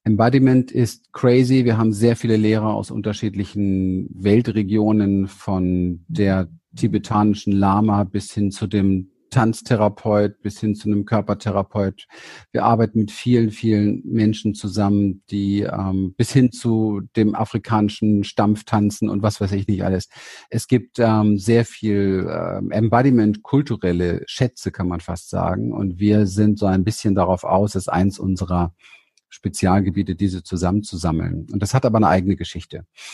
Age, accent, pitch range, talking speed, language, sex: 40-59, German, 95-115 Hz, 145 wpm, German, male